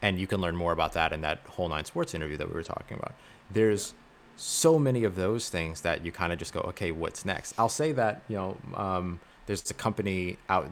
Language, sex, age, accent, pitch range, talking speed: English, male, 30-49, American, 85-100 Hz, 240 wpm